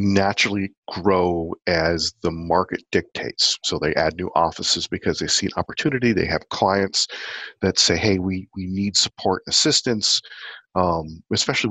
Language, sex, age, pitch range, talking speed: English, male, 40-59, 85-100 Hz, 155 wpm